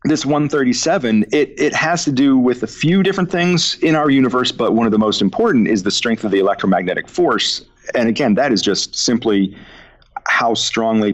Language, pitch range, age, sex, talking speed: English, 100-150 Hz, 40-59, male, 195 wpm